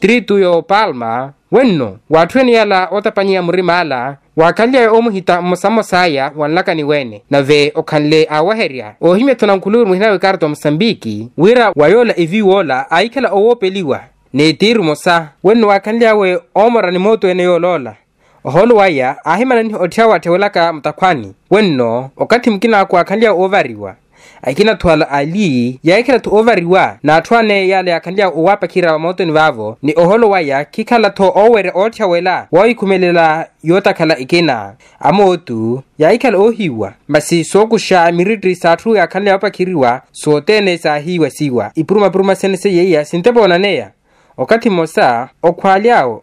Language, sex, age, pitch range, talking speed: Portuguese, male, 20-39, 155-200 Hz, 135 wpm